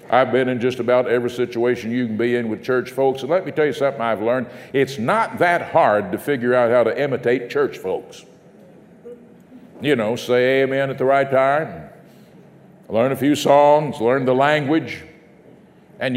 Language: English